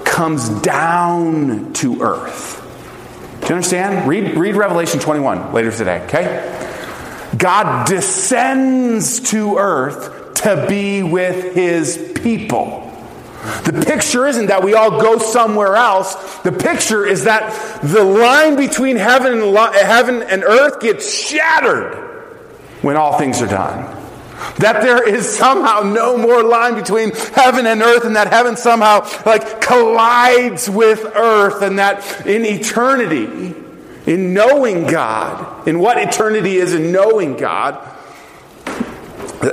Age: 40-59